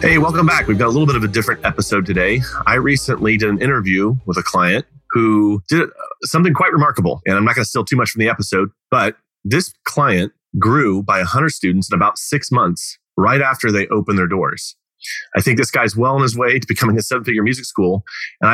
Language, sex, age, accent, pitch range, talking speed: English, male, 30-49, American, 100-140 Hz, 220 wpm